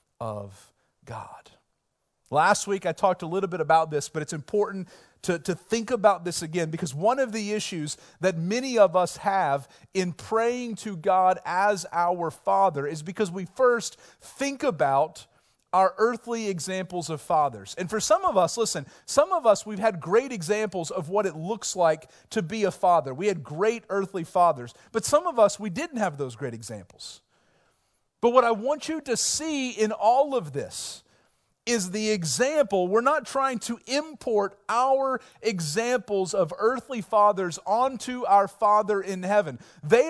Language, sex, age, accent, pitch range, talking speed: English, male, 40-59, American, 180-240 Hz, 170 wpm